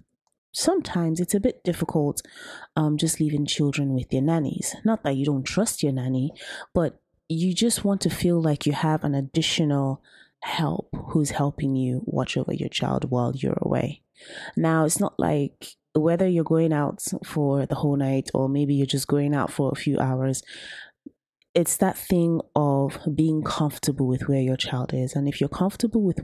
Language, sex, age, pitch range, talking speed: English, female, 20-39, 135-165 Hz, 180 wpm